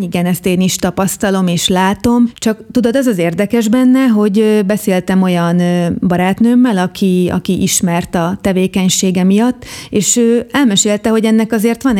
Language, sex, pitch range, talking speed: Hungarian, female, 185-215 Hz, 145 wpm